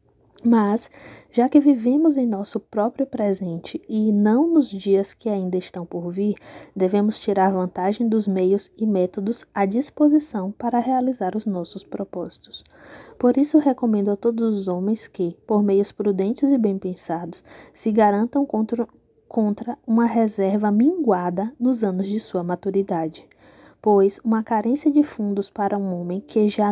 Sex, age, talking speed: female, 10-29, 150 wpm